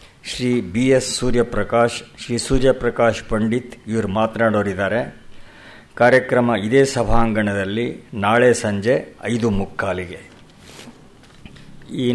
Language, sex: Kannada, male